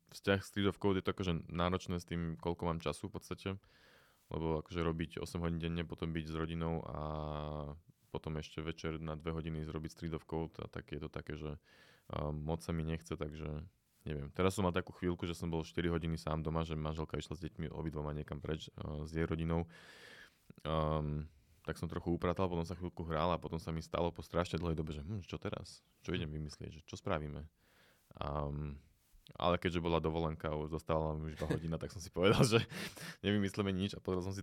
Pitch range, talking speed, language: 75-90 Hz, 210 wpm, Slovak